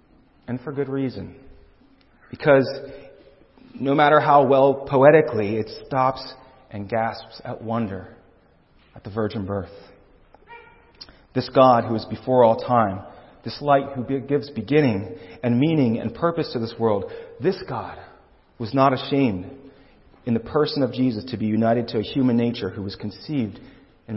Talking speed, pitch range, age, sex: 150 wpm, 115-140 Hz, 40-59, male